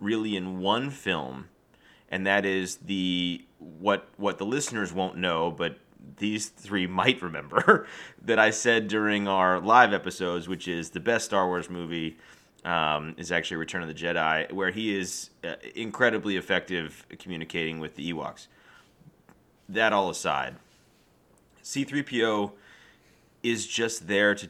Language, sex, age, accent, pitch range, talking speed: English, male, 30-49, American, 85-105 Hz, 140 wpm